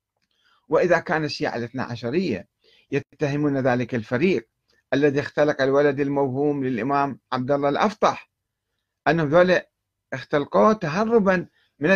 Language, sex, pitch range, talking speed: Arabic, male, 115-170 Hz, 105 wpm